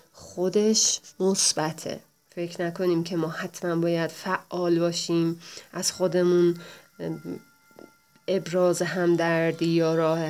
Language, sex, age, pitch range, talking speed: English, female, 30-49, 165-195 Hz, 100 wpm